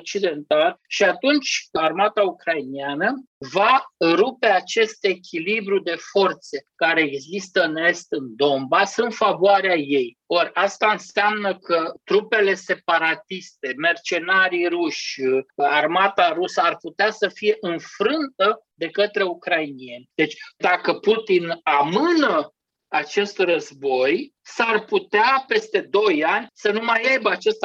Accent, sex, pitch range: native, male, 170-270 Hz